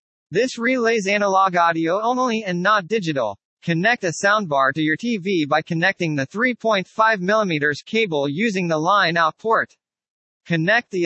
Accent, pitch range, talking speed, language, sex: American, 165-215 Hz, 135 wpm, English, male